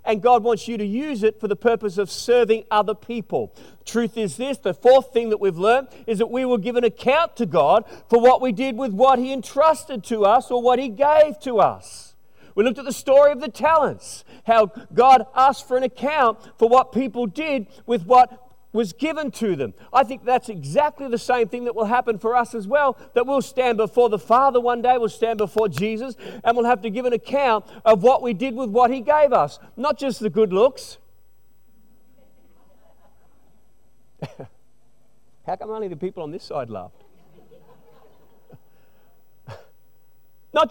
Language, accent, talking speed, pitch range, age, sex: English, Australian, 190 wpm, 225-270 Hz, 40-59, male